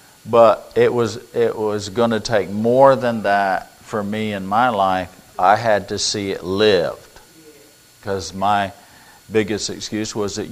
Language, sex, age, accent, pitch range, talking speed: English, male, 50-69, American, 100-125 Hz, 160 wpm